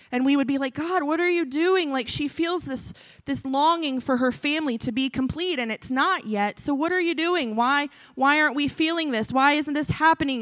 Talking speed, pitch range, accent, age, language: 235 wpm, 240-300 Hz, American, 20-39, English